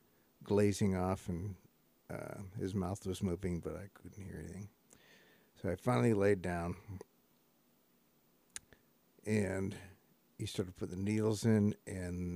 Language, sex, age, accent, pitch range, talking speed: English, male, 50-69, American, 90-100 Hz, 125 wpm